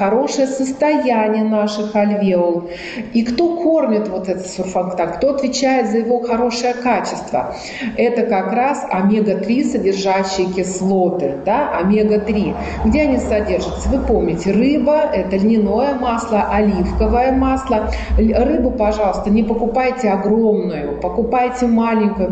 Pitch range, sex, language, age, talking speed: 185-240 Hz, female, Russian, 40-59, 115 wpm